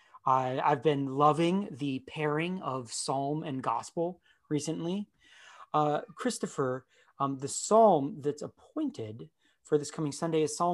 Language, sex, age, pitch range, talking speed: English, male, 30-49, 135-180 Hz, 130 wpm